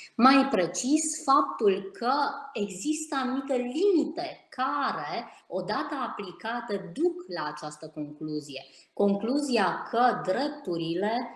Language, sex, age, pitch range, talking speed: Romanian, female, 20-39, 180-260 Hz, 90 wpm